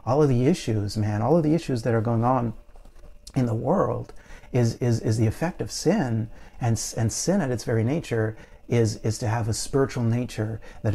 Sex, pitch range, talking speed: male, 105-120 Hz, 210 wpm